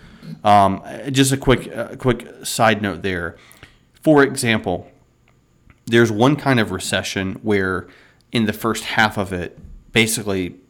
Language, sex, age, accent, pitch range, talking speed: English, male, 30-49, American, 95-115 Hz, 135 wpm